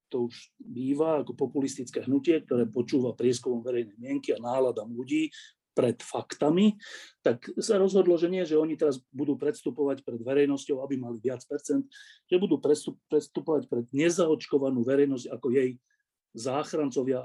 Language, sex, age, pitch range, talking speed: Slovak, male, 40-59, 125-170 Hz, 145 wpm